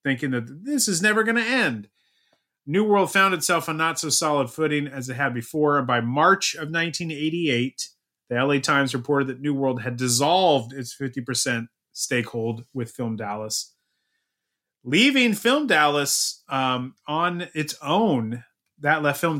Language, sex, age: English, male, 30-49